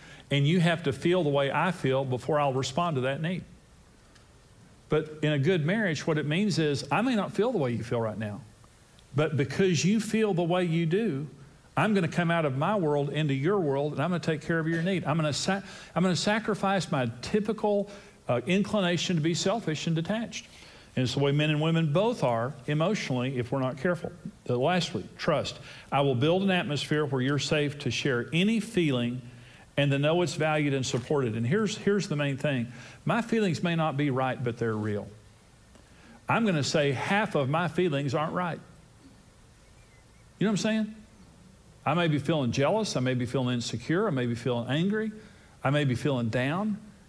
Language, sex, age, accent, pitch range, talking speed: English, male, 50-69, American, 130-185 Hz, 210 wpm